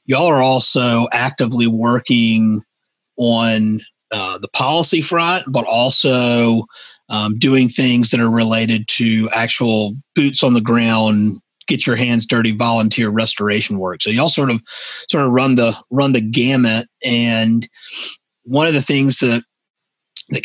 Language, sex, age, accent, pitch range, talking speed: English, male, 30-49, American, 110-130 Hz, 145 wpm